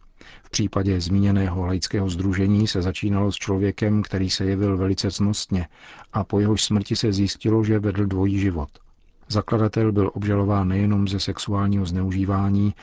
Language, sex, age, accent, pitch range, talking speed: Czech, male, 50-69, native, 95-105 Hz, 145 wpm